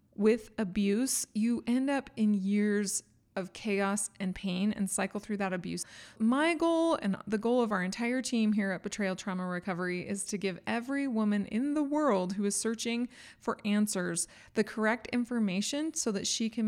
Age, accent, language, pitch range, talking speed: 20-39, American, English, 195-245 Hz, 180 wpm